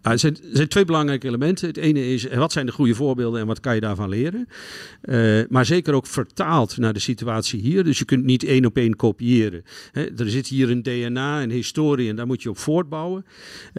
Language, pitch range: Dutch, 115-140 Hz